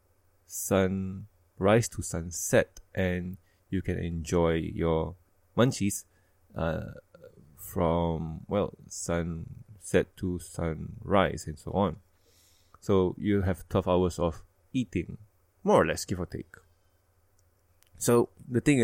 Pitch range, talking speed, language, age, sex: 90-115 Hz, 110 wpm, English, 20-39, male